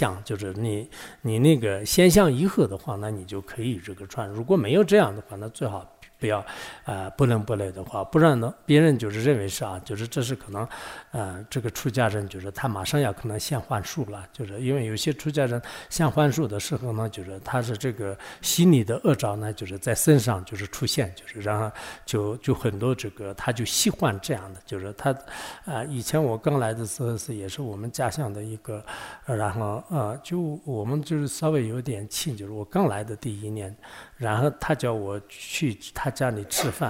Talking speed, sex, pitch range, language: 50 wpm, male, 105-140 Hz, English